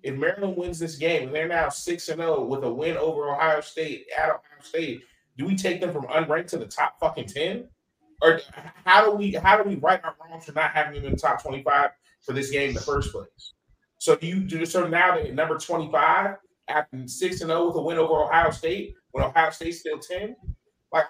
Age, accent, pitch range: 30-49, American, 135-170 Hz